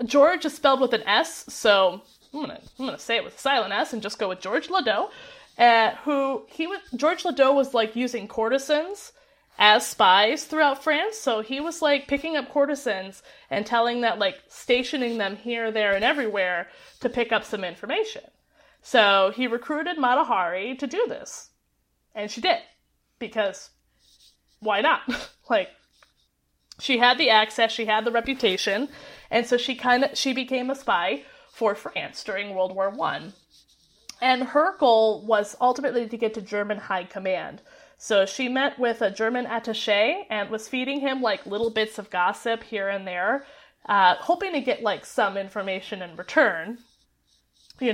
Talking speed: 170 wpm